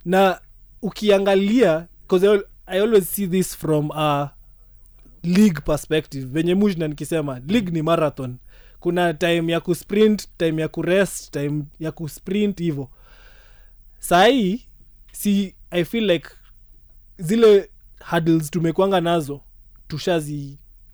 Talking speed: 125 wpm